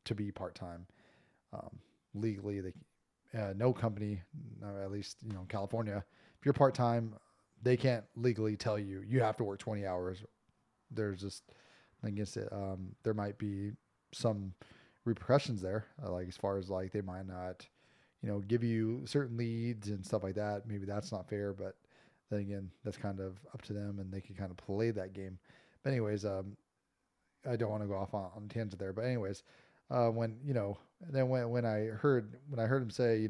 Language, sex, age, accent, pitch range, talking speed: English, male, 20-39, American, 100-120 Hz, 200 wpm